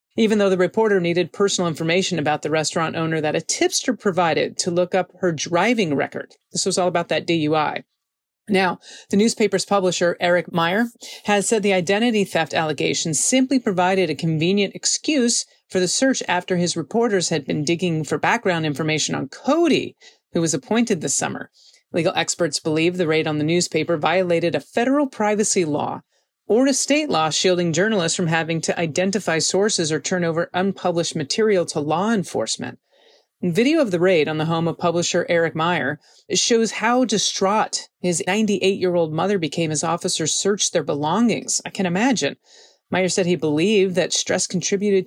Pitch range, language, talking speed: 165-200 Hz, English, 170 wpm